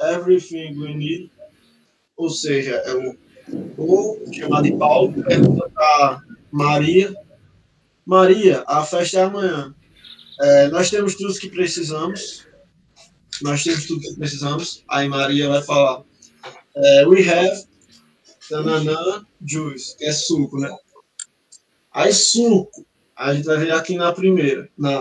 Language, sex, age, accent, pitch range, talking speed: Portuguese, male, 20-39, Brazilian, 140-185 Hz, 135 wpm